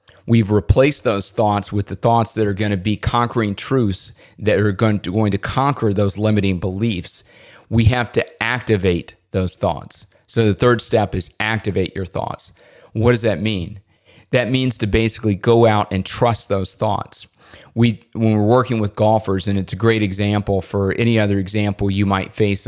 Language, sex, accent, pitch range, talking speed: English, male, American, 100-115 Hz, 185 wpm